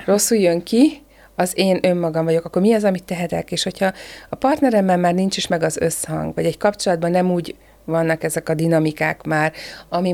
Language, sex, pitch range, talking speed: Hungarian, female, 165-190 Hz, 195 wpm